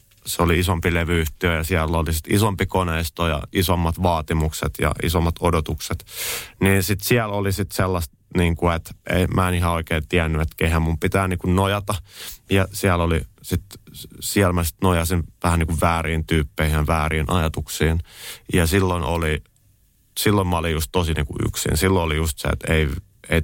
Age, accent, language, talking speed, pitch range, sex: 30-49, native, Finnish, 165 wpm, 80-95 Hz, male